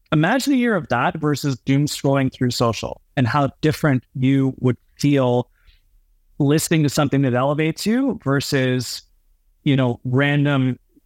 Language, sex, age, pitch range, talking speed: English, male, 30-49, 125-145 Hz, 140 wpm